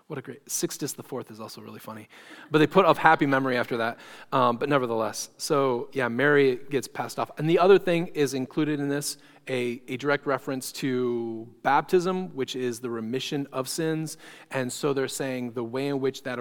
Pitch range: 115-145 Hz